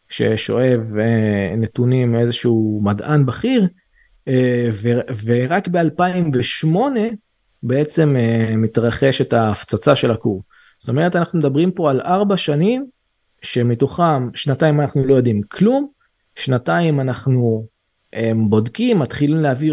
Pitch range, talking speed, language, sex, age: 120-180 Hz, 110 wpm, Hebrew, male, 20-39